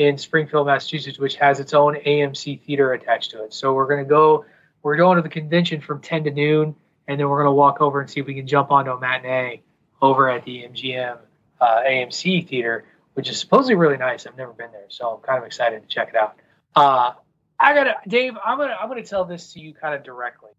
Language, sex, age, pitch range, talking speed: English, male, 20-39, 125-150 Hz, 250 wpm